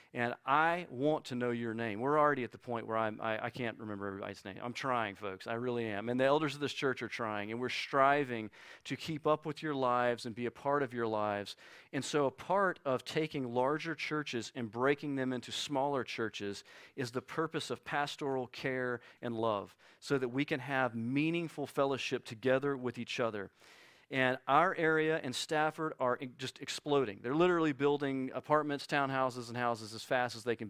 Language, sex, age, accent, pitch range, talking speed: English, male, 40-59, American, 115-145 Hz, 200 wpm